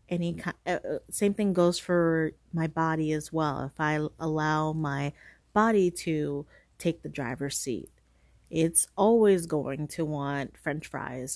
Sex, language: female, English